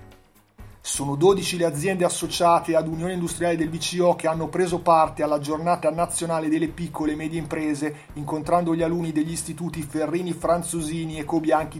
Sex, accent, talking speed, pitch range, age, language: male, native, 160 wpm, 145-165 Hz, 30-49, Italian